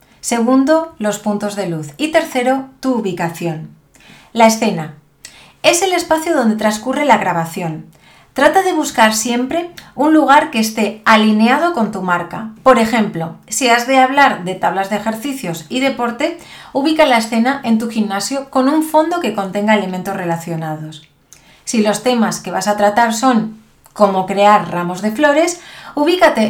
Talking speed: 155 wpm